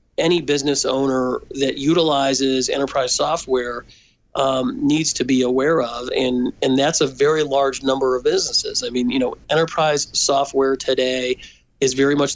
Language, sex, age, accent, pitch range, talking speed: English, male, 40-59, American, 125-145 Hz, 155 wpm